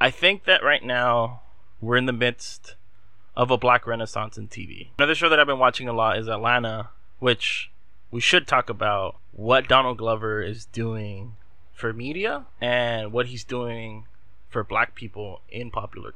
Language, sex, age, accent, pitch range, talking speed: English, male, 20-39, American, 105-135 Hz, 170 wpm